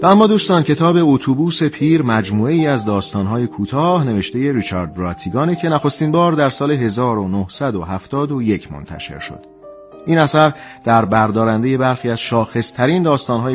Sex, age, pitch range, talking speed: male, 40-59, 105-145 Hz, 130 wpm